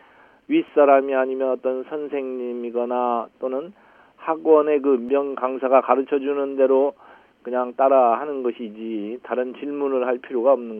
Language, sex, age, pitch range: Korean, male, 40-59, 125-150 Hz